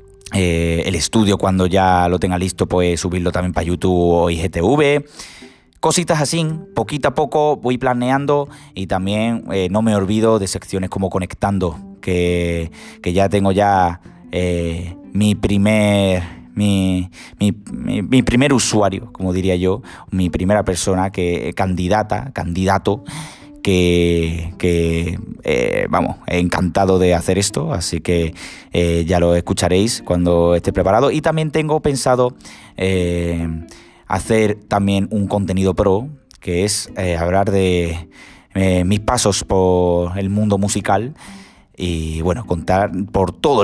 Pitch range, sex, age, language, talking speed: 90-105 Hz, male, 20-39, Spanish, 135 wpm